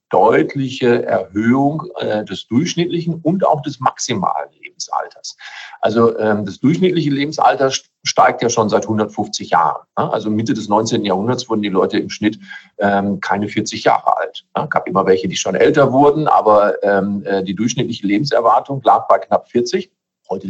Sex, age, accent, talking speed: male, 40-59, German, 160 wpm